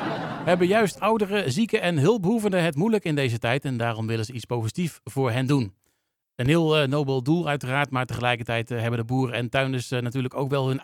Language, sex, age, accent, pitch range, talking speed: Dutch, male, 40-59, Dutch, 125-165 Hz, 200 wpm